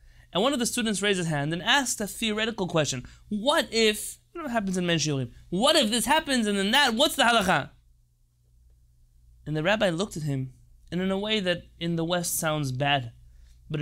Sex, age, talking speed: male, 20-39, 210 wpm